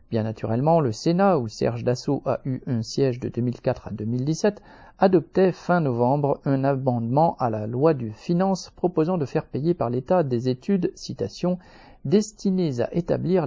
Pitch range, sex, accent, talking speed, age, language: 120-165 Hz, male, French, 165 wpm, 50-69, French